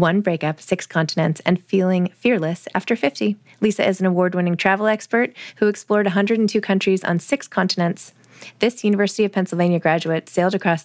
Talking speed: 160 wpm